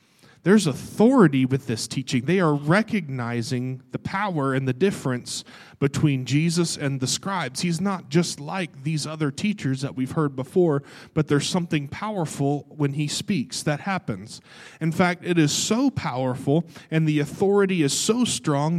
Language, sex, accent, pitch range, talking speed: English, male, American, 140-175 Hz, 160 wpm